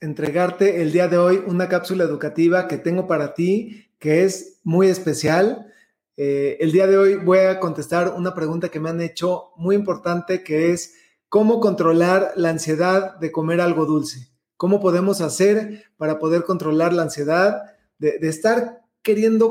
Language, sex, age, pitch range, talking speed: Spanish, male, 30-49, 170-205 Hz, 165 wpm